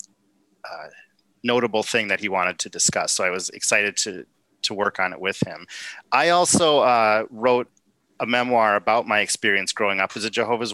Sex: male